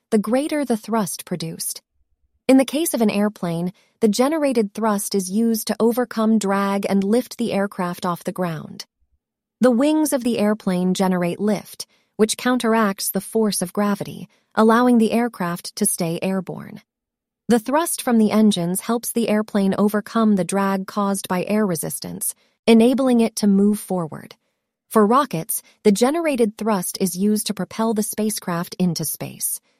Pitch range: 195-235 Hz